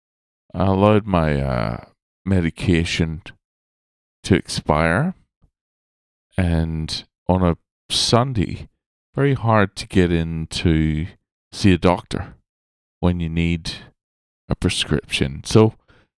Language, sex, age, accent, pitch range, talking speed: English, male, 40-59, American, 70-105 Hz, 95 wpm